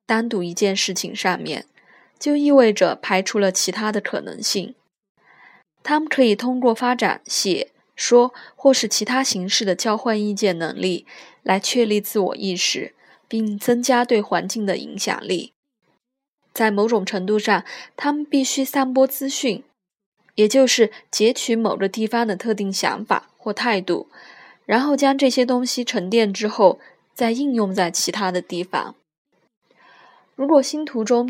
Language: Chinese